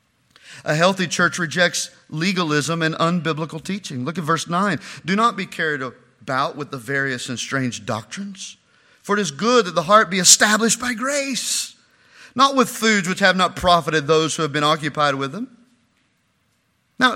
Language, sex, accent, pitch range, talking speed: English, male, American, 155-230 Hz, 170 wpm